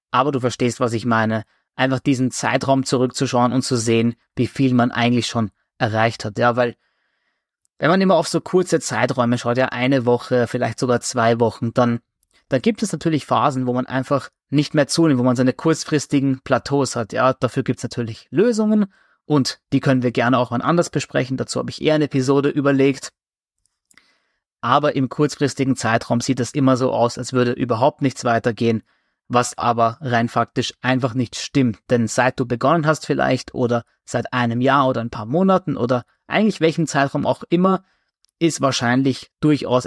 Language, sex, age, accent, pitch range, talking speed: German, male, 20-39, German, 120-145 Hz, 180 wpm